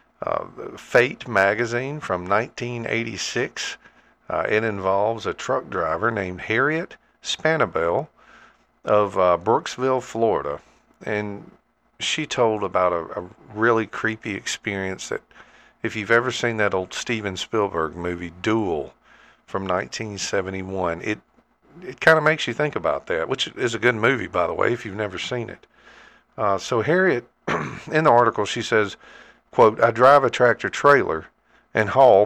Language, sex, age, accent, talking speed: English, male, 50-69, American, 150 wpm